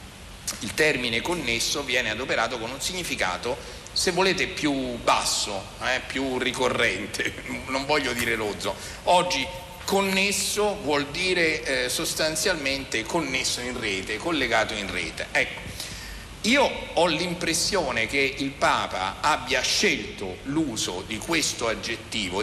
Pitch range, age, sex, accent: 115-175 Hz, 50-69, male, native